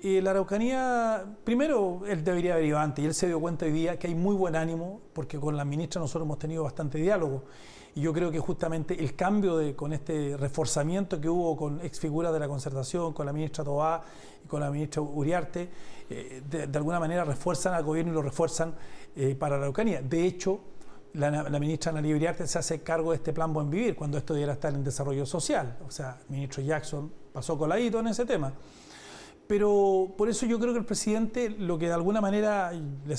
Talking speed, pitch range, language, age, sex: 215 wpm, 150-180 Hz, Spanish, 40-59, male